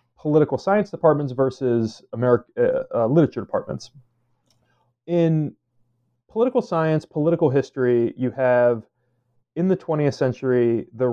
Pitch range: 120-150 Hz